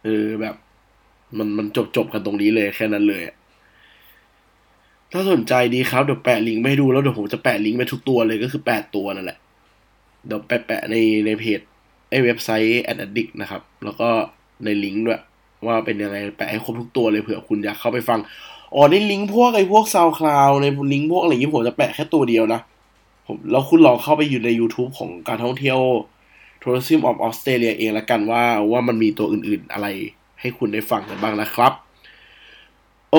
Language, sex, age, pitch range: Thai, male, 20-39, 105-135 Hz